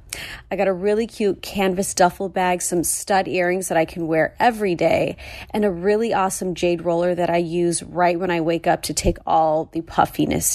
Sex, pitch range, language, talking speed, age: female, 175-215 Hz, English, 205 wpm, 30-49